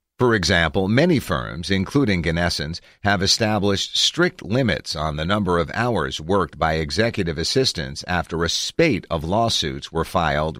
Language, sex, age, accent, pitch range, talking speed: English, male, 50-69, American, 85-110 Hz, 145 wpm